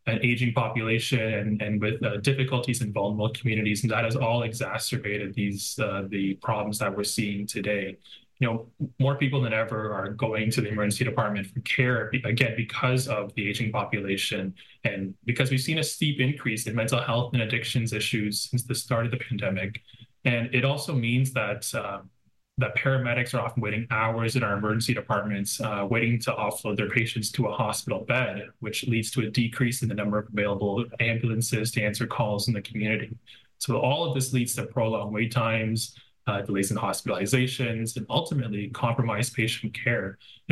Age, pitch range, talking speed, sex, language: 20-39, 105-130 Hz, 185 wpm, male, English